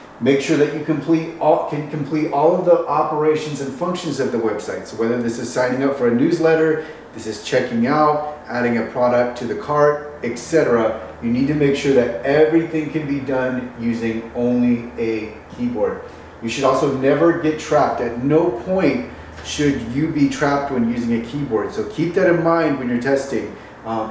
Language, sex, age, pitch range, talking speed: English, male, 30-49, 120-150 Hz, 190 wpm